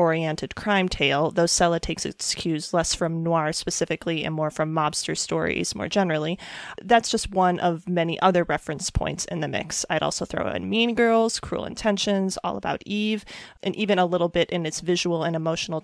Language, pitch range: English, 165-200 Hz